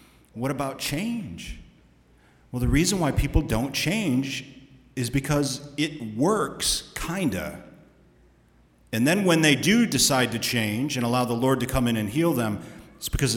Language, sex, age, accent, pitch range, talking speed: English, male, 40-59, American, 95-130 Hz, 160 wpm